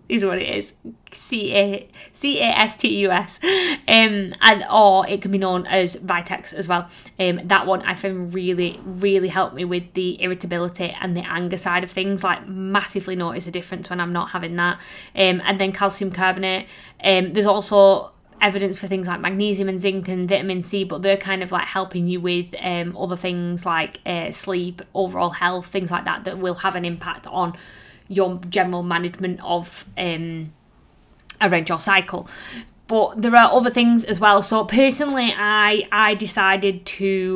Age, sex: 20-39, female